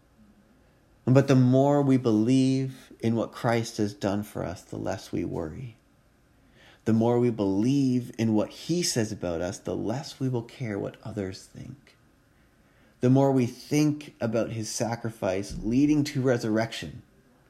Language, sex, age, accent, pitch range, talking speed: English, male, 30-49, American, 100-125 Hz, 150 wpm